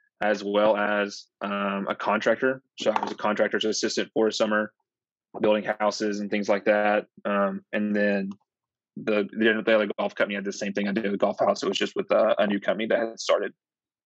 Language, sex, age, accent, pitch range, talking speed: English, male, 20-39, American, 100-110 Hz, 210 wpm